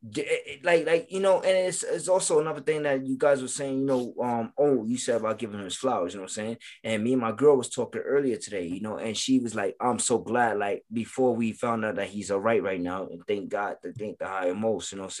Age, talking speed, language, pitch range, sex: 20-39, 280 wpm, English, 115-160 Hz, male